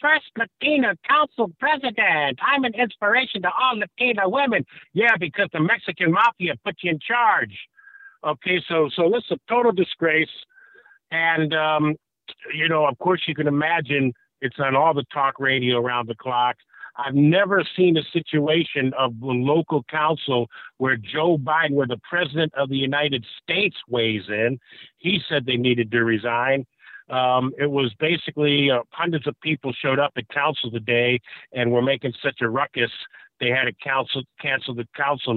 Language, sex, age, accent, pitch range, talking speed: English, male, 50-69, American, 120-170 Hz, 170 wpm